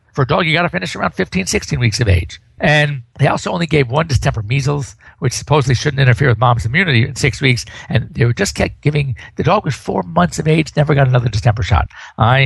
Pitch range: 120-160 Hz